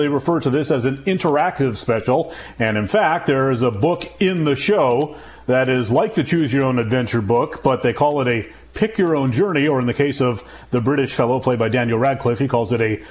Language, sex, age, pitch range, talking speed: English, male, 40-59, 120-160 Hz, 235 wpm